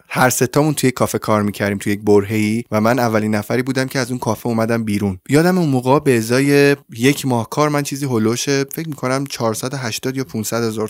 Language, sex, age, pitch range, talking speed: Persian, male, 20-39, 110-130 Hz, 205 wpm